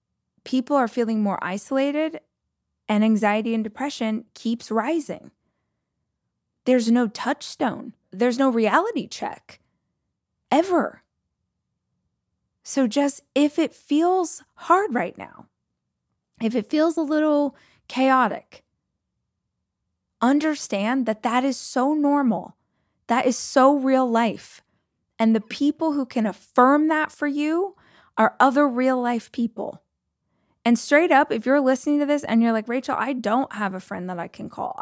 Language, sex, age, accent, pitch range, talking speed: English, female, 20-39, American, 225-285 Hz, 135 wpm